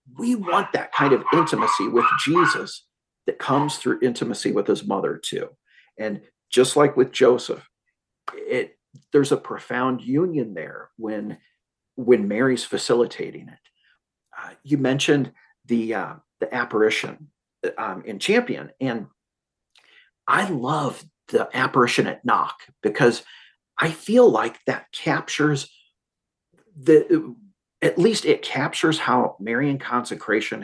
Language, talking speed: English, 120 wpm